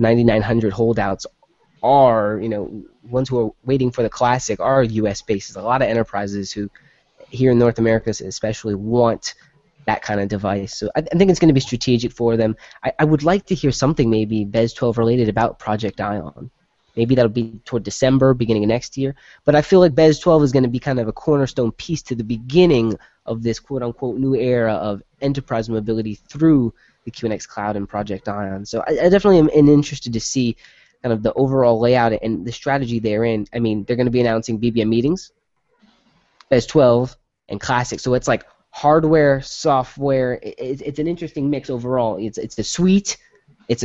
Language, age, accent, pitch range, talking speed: English, 20-39, American, 110-140 Hz, 195 wpm